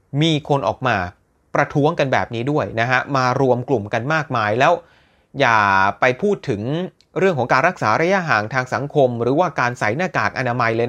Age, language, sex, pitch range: 30-49, Thai, male, 120-170 Hz